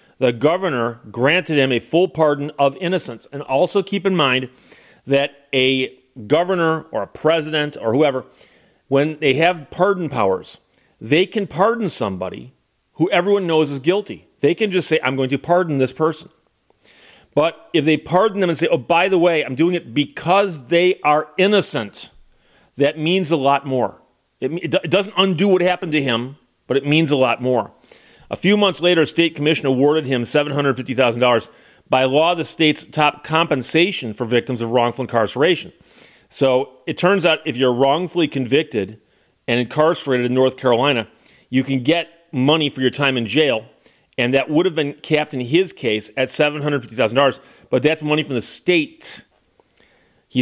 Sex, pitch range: male, 130-170 Hz